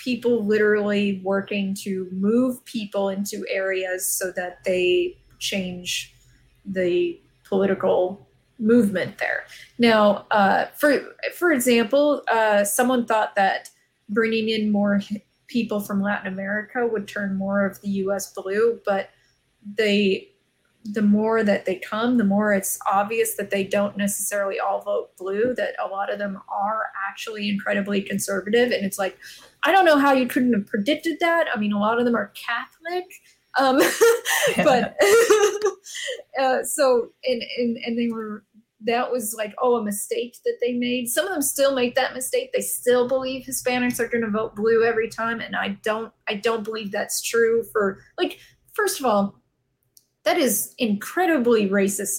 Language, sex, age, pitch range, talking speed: English, female, 20-39, 200-250 Hz, 160 wpm